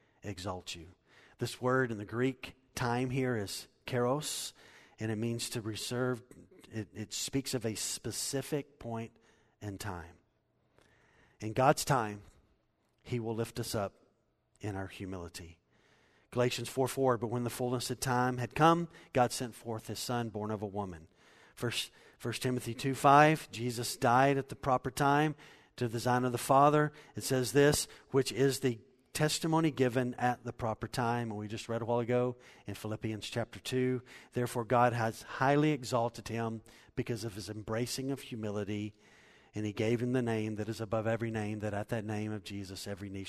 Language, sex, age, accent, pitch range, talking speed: English, male, 50-69, American, 105-130 Hz, 175 wpm